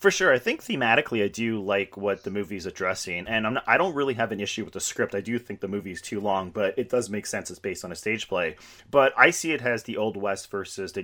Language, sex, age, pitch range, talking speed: English, male, 30-49, 100-125 Hz, 295 wpm